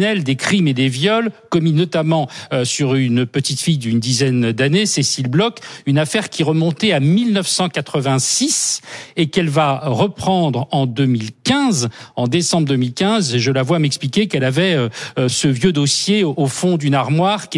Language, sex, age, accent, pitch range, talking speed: French, male, 50-69, French, 135-175 Hz, 155 wpm